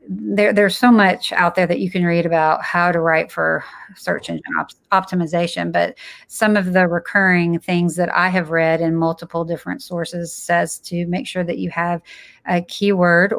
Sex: female